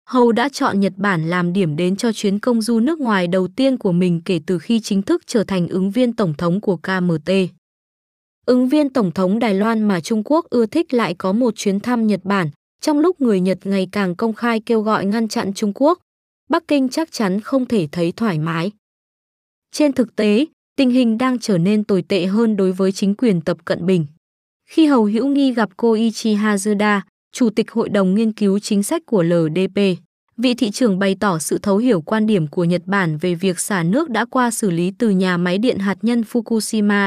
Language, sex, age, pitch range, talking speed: Vietnamese, female, 20-39, 190-235 Hz, 220 wpm